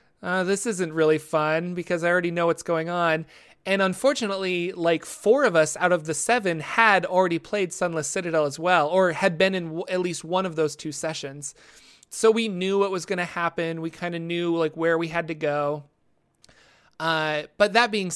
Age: 30-49